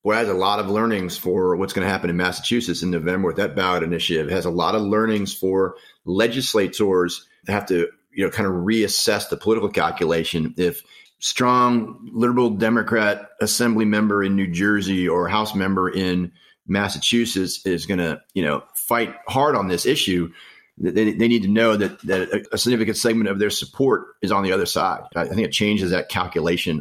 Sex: male